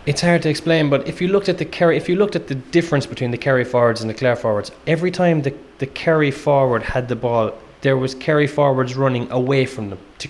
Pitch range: 130-155 Hz